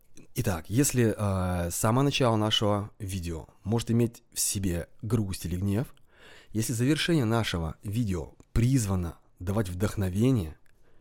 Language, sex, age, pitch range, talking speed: Russian, male, 20-39, 90-115 Hz, 115 wpm